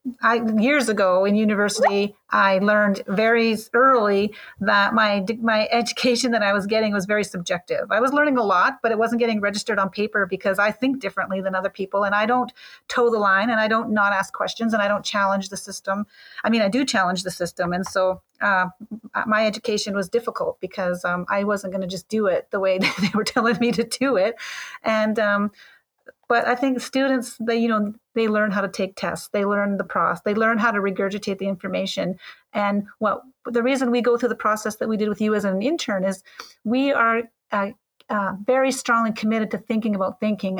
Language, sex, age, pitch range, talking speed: English, female, 40-59, 195-230 Hz, 210 wpm